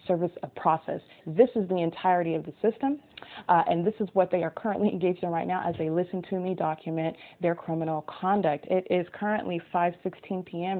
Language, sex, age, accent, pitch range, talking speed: English, female, 20-39, American, 165-185 Hz, 195 wpm